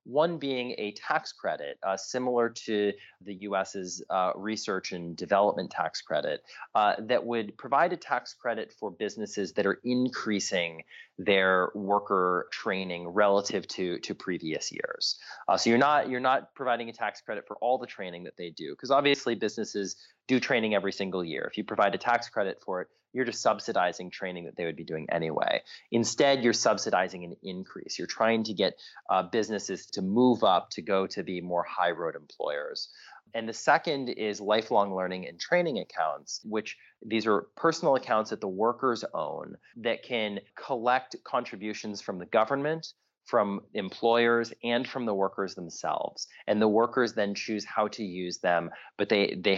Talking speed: 175 wpm